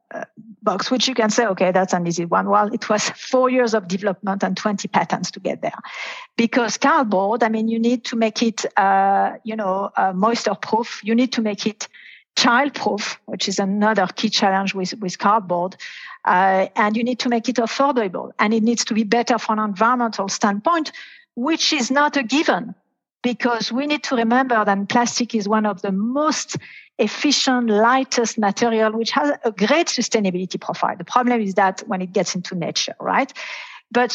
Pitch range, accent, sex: 200-250 Hz, French, female